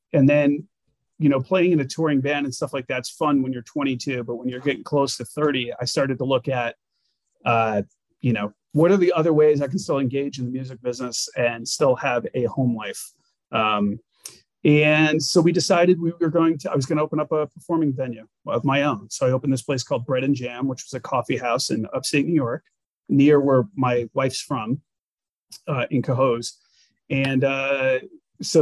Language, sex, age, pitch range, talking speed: English, male, 30-49, 120-145 Hz, 210 wpm